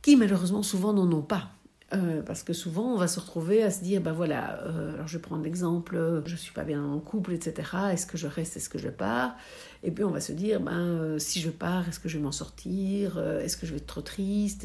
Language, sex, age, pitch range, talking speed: French, female, 60-79, 160-200 Hz, 270 wpm